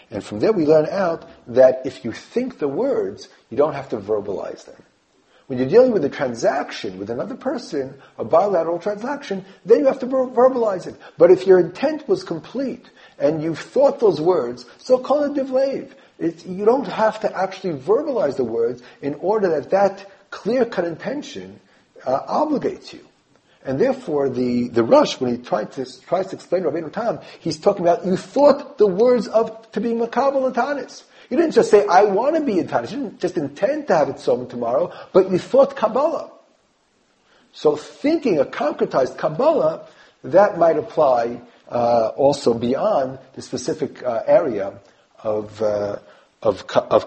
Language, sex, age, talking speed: English, male, 40-59, 175 wpm